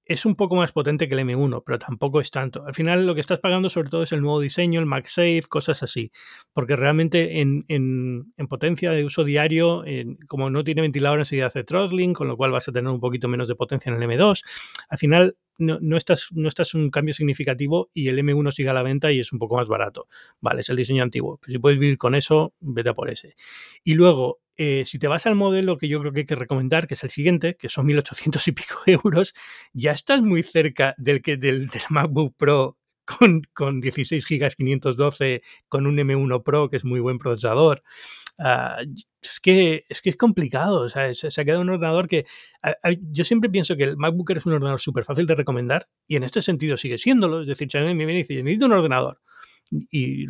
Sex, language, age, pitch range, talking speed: male, Spanish, 30-49, 135-170 Hz, 235 wpm